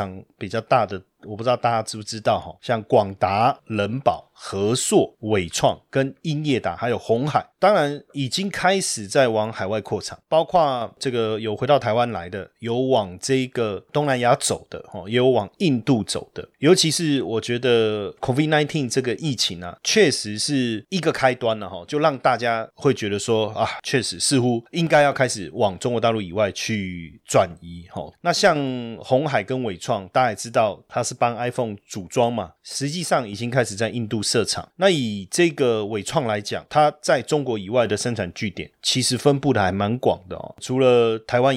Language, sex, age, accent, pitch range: Chinese, male, 30-49, native, 105-135 Hz